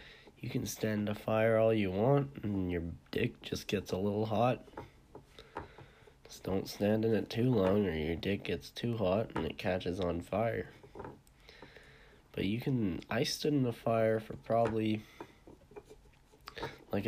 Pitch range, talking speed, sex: 90-110 Hz, 160 wpm, male